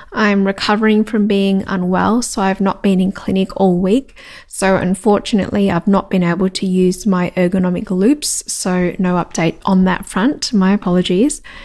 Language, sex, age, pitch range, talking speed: English, female, 10-29, 185-220 Hz, 165 wpm